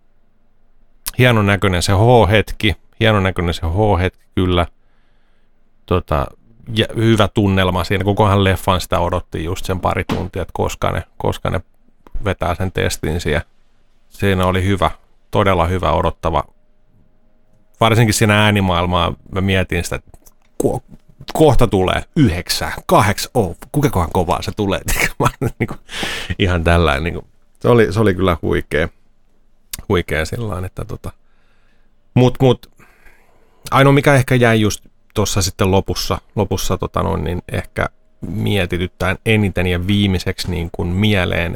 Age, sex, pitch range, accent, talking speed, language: 30-49, male, 85-105 Hz, native, 130 wpm, Finnish